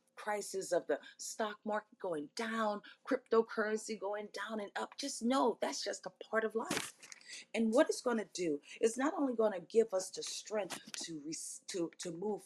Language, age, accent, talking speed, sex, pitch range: English, 40-59, American, 190 wpm, female, 175-250 Hz